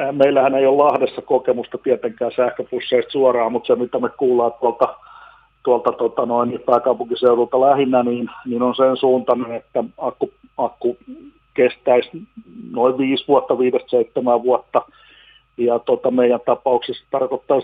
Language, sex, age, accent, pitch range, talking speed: Finnish, male, 50-69, native, 120-145 Hz, 130 wpm